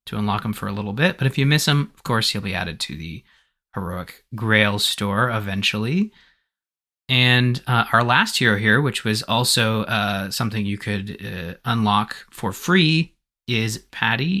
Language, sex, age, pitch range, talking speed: English, male, 30-49, 110-135 Hz, 175 wpm